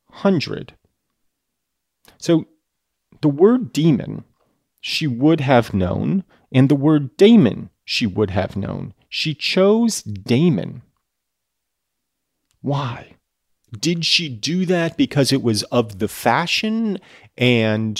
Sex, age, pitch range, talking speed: male, 40-59, 105-150 Hz, 105 wpm